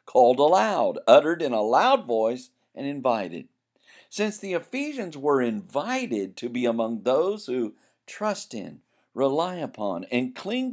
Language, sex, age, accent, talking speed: English, male, 50-69, American, 140 wpm